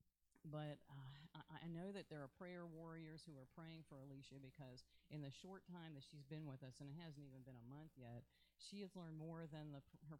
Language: English